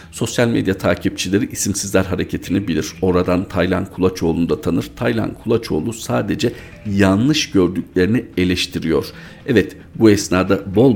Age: 50-69